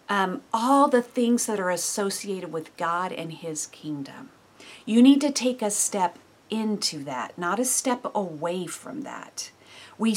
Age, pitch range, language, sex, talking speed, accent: 50-69, 165-225 Hz, English, female, 160 wpm, American